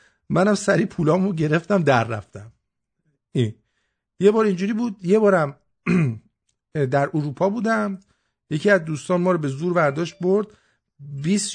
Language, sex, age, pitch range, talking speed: English, male, 50-69, 135-190 Hz, 135 wpm